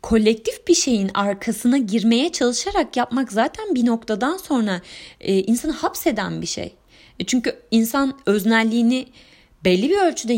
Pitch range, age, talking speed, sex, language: 200-255 Hz, 30-49, 120 wpm, female, Turkish